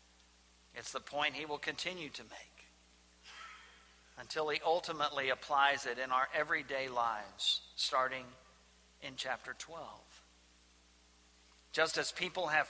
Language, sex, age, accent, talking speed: English, male, 50-69, American, 120 wpm